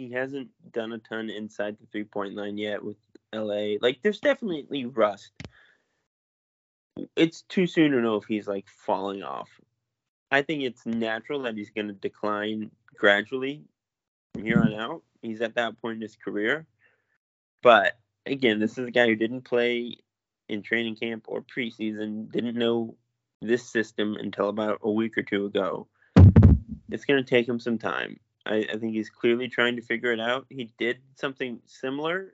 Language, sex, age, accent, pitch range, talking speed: English, male, 20-39, American, 105-125 Hz, 175 wpm